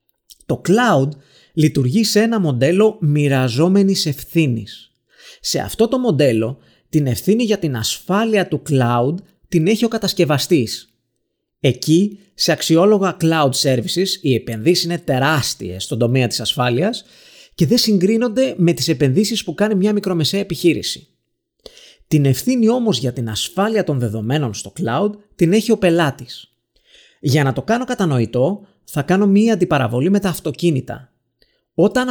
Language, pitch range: Greek, 130-200 Hz